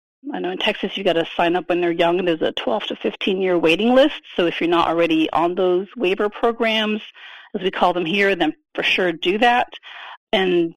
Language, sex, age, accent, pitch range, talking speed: English, female, 40-59, American, 180-240 Hz, 215 wpm